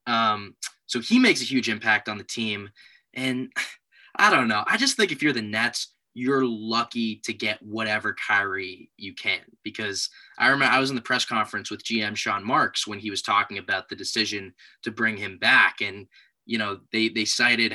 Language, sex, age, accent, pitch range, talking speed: English, male, 10-29, American, 110-130 Hz, 200 wpm